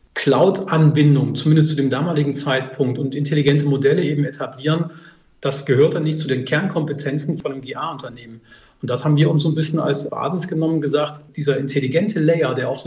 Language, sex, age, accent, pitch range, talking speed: German, male, 40-59, German, 140-160 Hz, 180 wpm